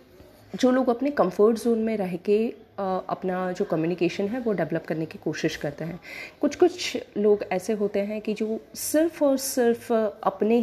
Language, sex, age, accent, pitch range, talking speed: Hindi, female, 30-49, native, 180-240 Hz, 175 wpm